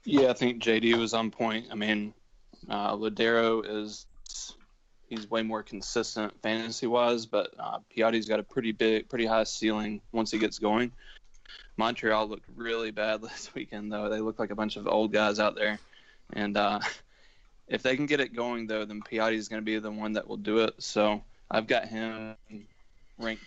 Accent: American